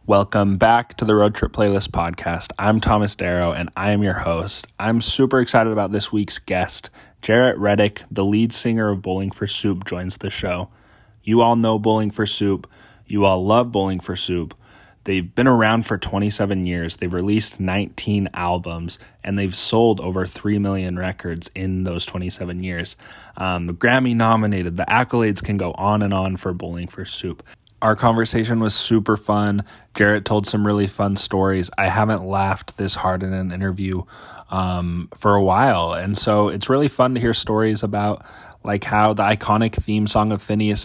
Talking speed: 180 wpm